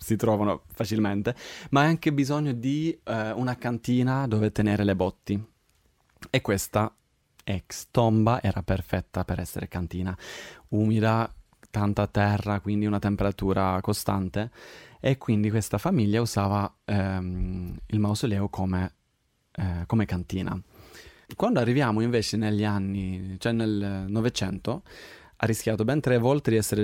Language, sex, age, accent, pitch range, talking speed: Italian, male, 20-39, native, 95-115 Hz, 130 wpm